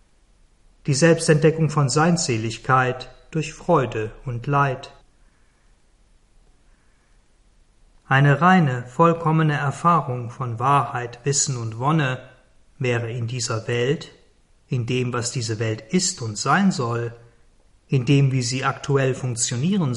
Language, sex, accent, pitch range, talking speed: German, male, German, 120-145 Hz, 110 wpm